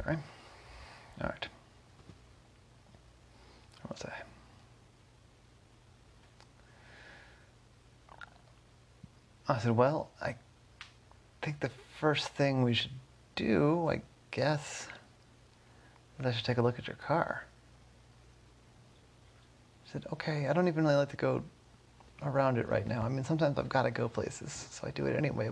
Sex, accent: male, American